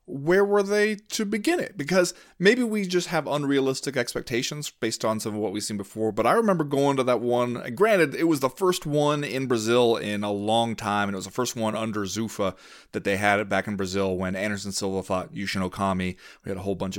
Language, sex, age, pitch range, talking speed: English, male, 30-49, 100-140 Hz, 235 wpm